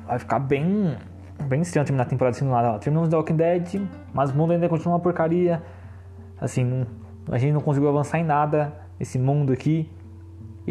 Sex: male